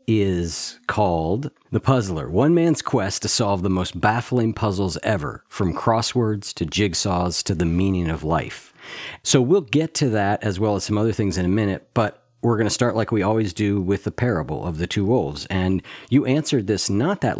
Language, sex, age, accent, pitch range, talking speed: English, male, 50-69, American, 90-115 Hz, 205 wpm